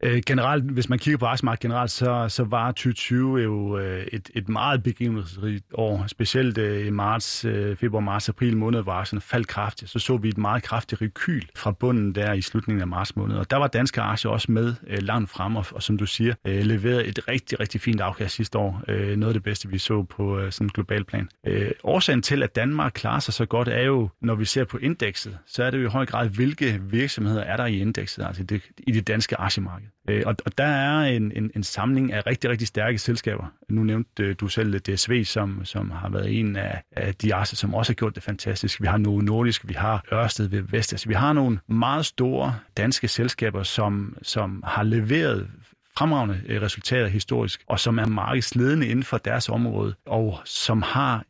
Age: 30-49